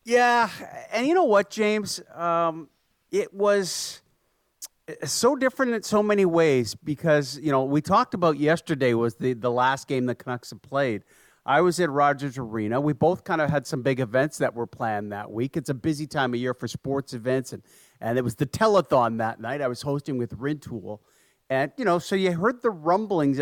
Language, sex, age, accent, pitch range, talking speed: English, male, 40-59, American, 130-180 Hz, 200 wpm